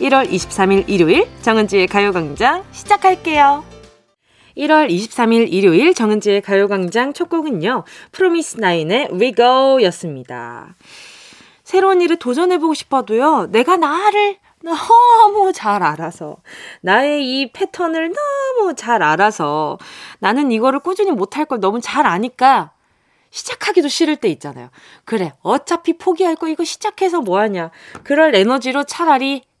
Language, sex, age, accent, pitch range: Korean, female, 20-39, native, 220-340 Hz